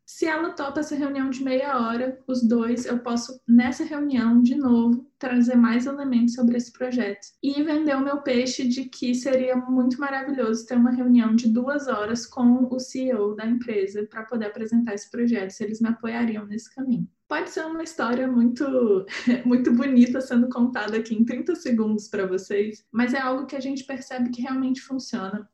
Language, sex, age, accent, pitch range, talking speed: Portuguese, female, 10-29, Brazilian, 220-265 Hz, 185 wpm